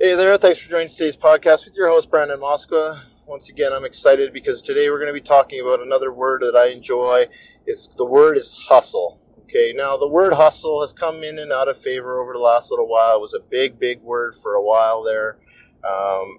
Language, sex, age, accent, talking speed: English, male, 30-49, American, 225 wpm